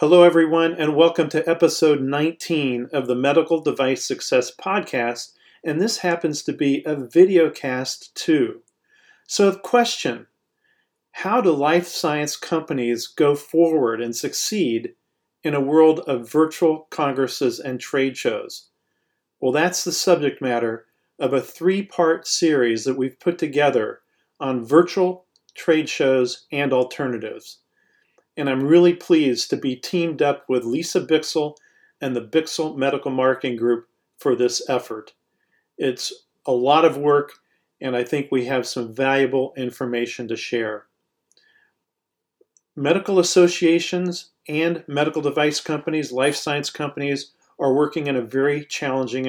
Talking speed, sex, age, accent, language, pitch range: 135 wpm, male, 40-59, American, English, 130-165 Hz